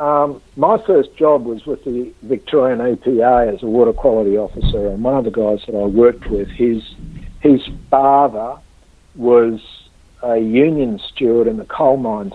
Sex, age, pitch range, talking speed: male, 60-79, 110-130 Hz, 165 wpm